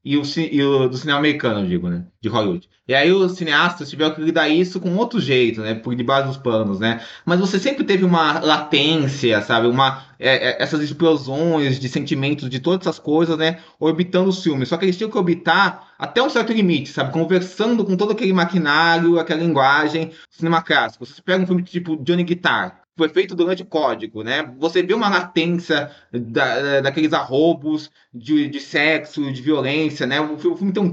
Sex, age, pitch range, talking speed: male, 20-39, 145-180 Hz, 200 wpm